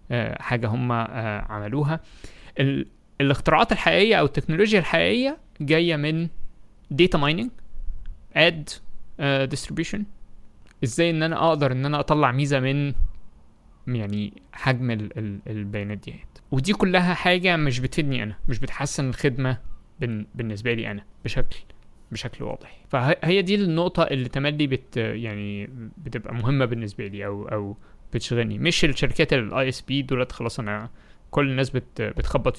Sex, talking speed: male, 125 wpm